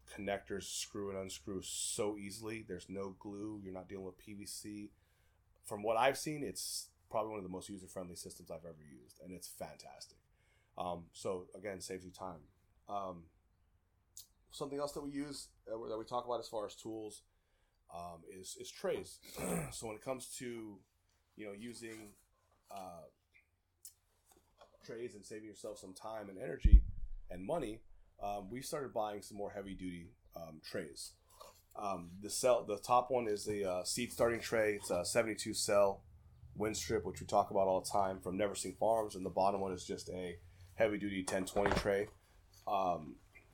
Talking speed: 170 wpm